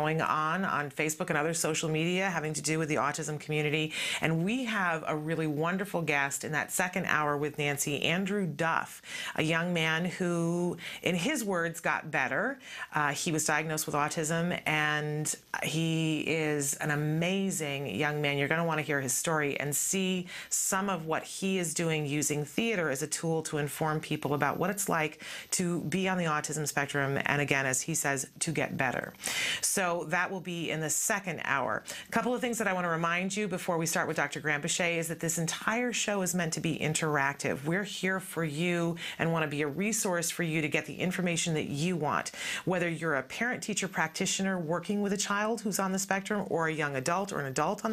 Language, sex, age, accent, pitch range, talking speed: English, female, 30-49, American, 155-185 Hz, 215 wpm